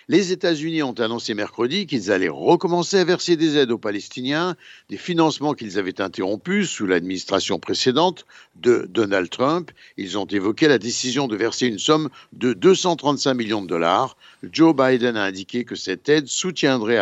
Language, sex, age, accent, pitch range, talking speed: Italian, male, 60-79, French, 120-165 Hz, 165 wpm